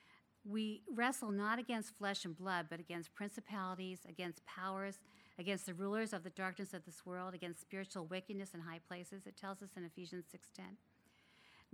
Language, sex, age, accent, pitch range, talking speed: English, female, 50-69, American, 175-210 Hz, 170 wpm